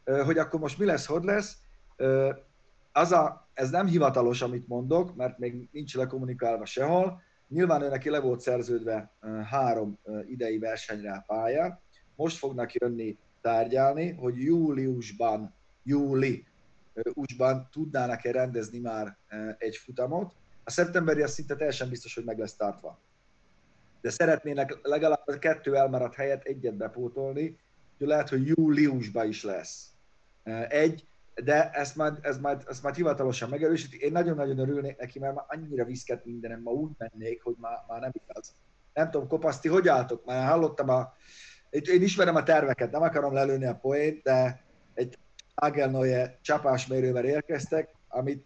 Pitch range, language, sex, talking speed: 125-155 Hz, Hungarian, male, 140 wpm